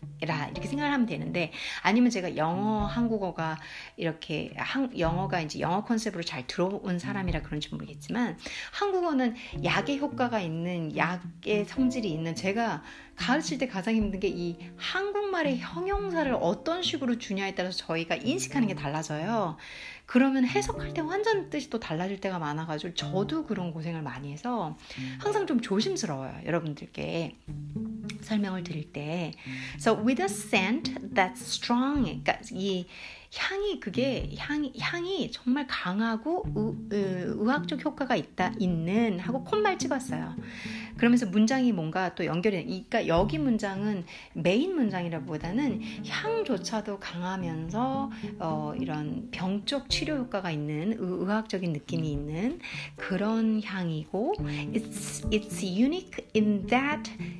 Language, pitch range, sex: Korean, 170-250 Hz, female